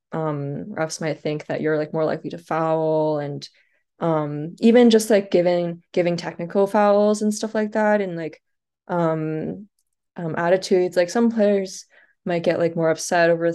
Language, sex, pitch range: English, female, 160-195 Hz